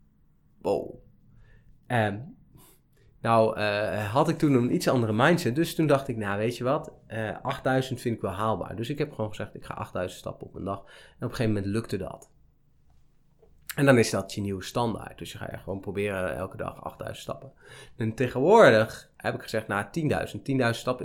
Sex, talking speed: male, 195 wpm